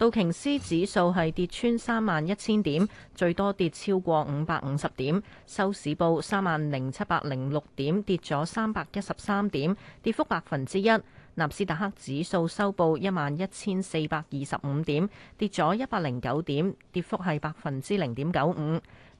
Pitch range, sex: 150-200 Hz, female